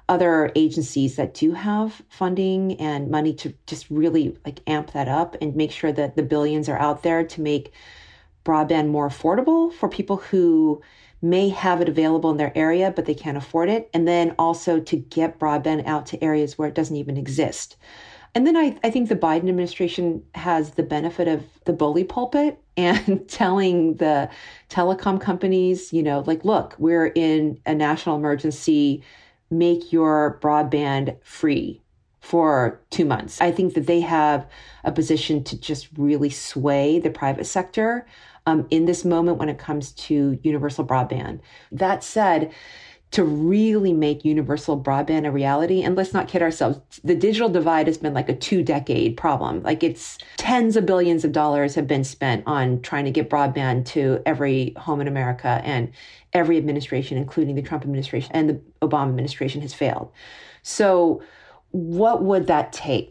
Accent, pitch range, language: American, 145-175 Hz, English